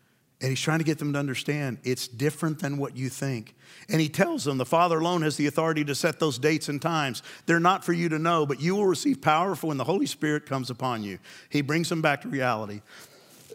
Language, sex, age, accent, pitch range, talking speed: English, male, 50-69, American, 130-160 Hz, 245 wpm